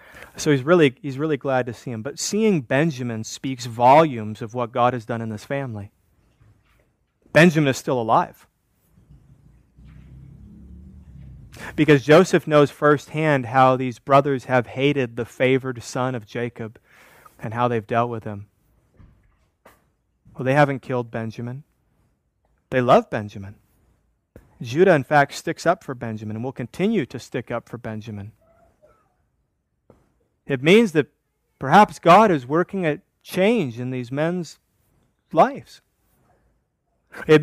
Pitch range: 120-155 Hz